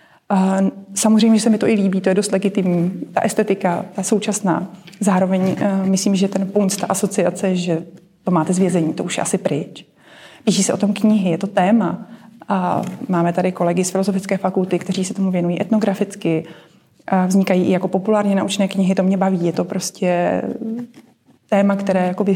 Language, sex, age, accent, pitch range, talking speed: Czech, female, 30-49, native, 180-200 Hz, 180 wpm